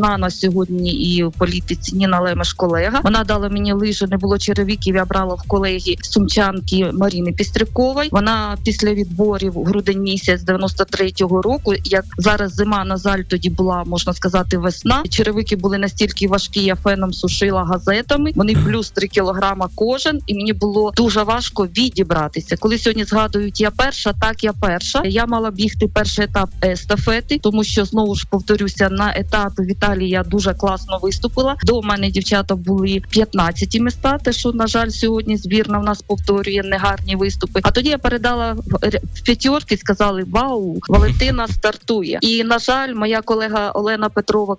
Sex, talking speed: female, 155 wpm